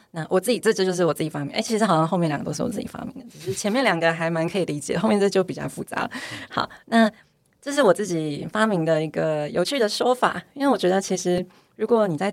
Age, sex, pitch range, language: 20-39, female, 155-215 Hz, Chinese